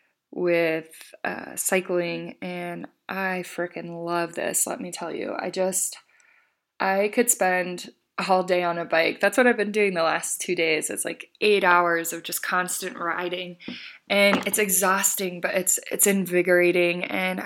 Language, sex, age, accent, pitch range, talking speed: English, female, 20-39, American, 175-200 Hz, 160 wpm